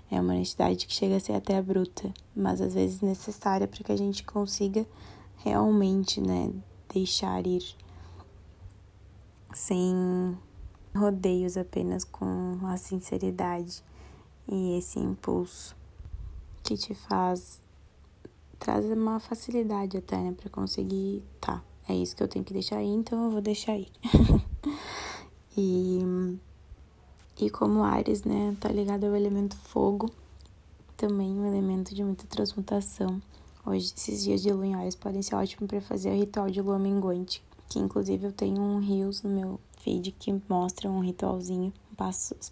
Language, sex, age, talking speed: Portuguese, female, 20-39, 145 wpm